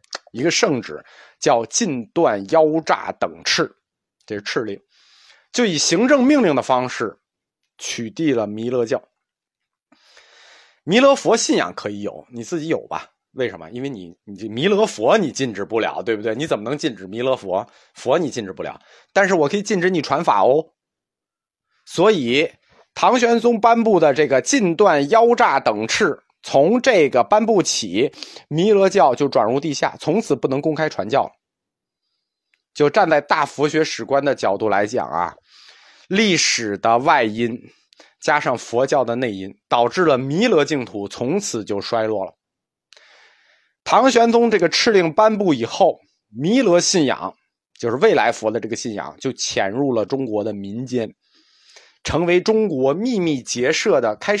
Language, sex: Chinese, male